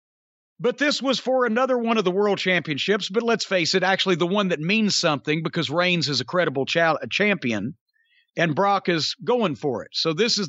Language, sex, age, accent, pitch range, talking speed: English, male, 50-69, American, 180-235 Hz, 210 wpm